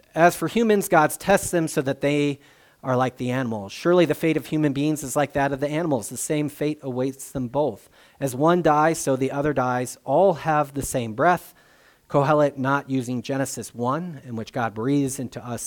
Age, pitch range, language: 30-49, 120-155 Hz, English